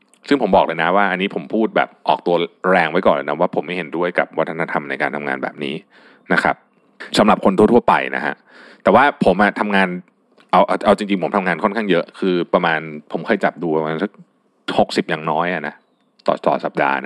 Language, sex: Thai, male